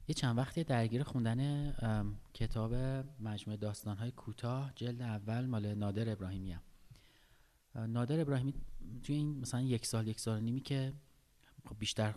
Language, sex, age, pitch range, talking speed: Persian, male, 30-49, 110-135 Hz, 135 wpm